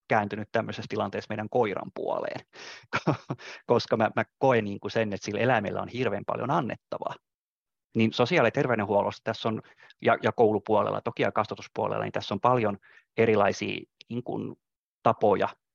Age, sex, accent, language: 30-49, male, native, Finnish